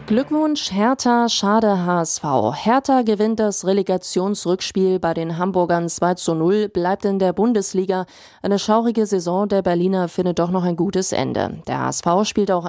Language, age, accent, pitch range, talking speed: German, 30-49, German, 170-210 Hz, 155 wpm